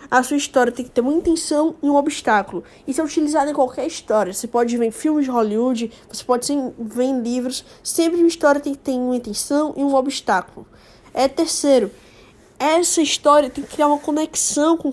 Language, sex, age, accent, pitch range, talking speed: Portuguese, female, 10-29, Brazilian, 255-315 Hz, 195 wpm